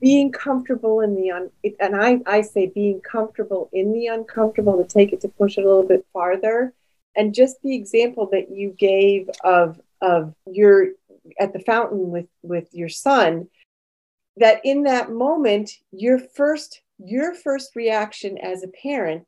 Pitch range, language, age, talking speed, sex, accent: 190-235 Hz, English, 40-59, 160 wpm, female, American